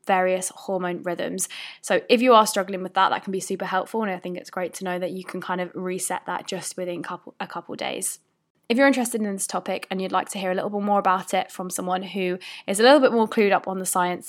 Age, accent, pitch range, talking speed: 10-29, British, 185-230 Hz, 270 wpm